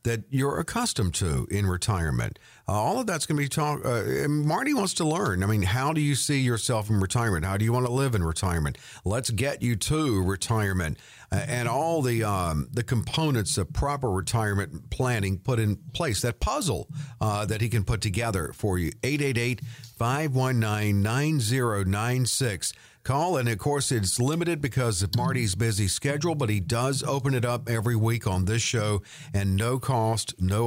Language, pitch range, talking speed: English, 105-140 Hz, 180 wpm